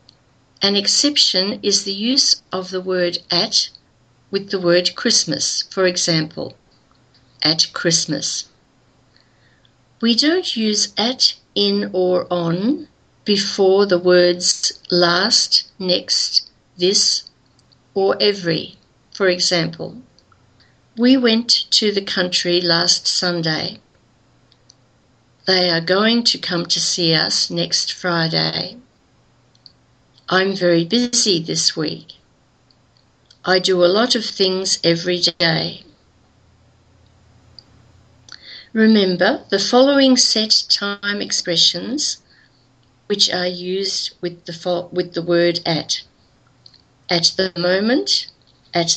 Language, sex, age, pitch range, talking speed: English, female, 50-69, 135-200 Hz, 105 wpm